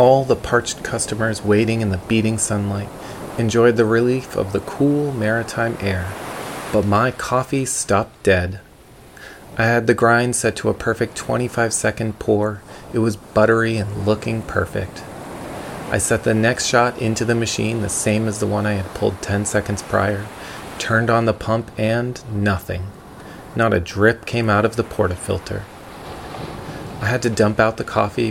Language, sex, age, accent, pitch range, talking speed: English, male, 30-49, American, 100-115 Hz, 165 wpm